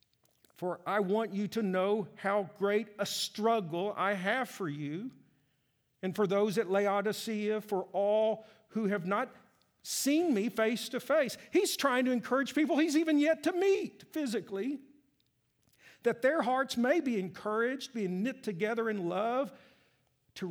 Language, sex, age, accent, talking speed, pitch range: English, male, 50-69, American, 150 wpm, 190-255 Hz